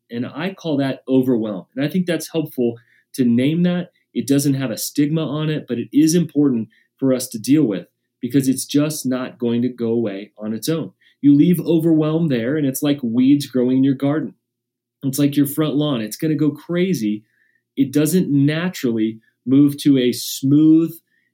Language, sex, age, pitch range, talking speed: English, male, 30-49, 120-155 Hz, 190 wpm